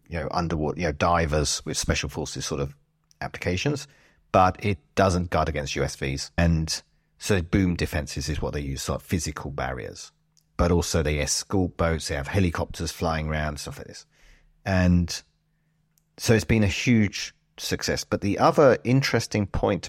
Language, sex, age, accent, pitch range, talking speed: English, male, 40-59, British, 80-105 Hz, 165 wpm